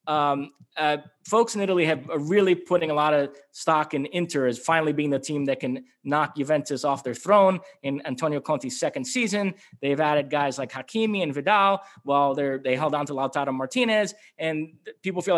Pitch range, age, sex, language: 145-180 Hz, 20-39, male, English